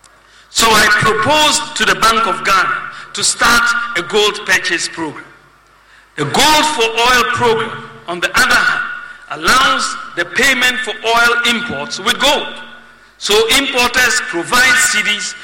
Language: English